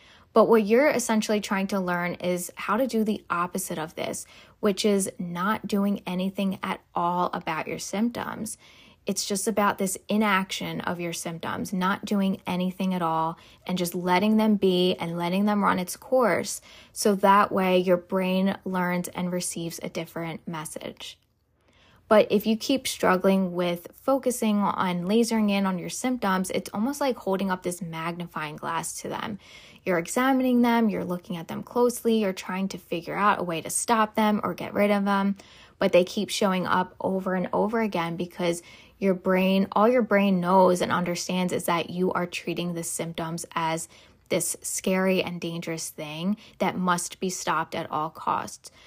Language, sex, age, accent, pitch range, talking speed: English, female, 10-29, American, 175-210 Hz, 175 wpm